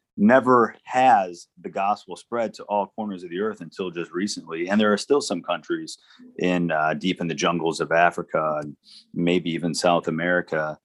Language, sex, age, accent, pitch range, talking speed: English, male, 30-49, American, 85-100 Hz, 185 wpm